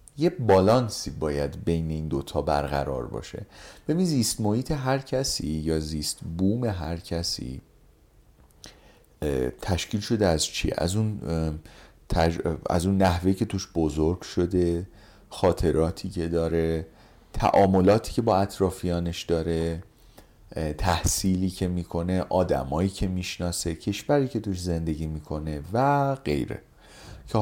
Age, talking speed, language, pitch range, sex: 40-59, 115 wpm, Persian, 80-115 Hz, male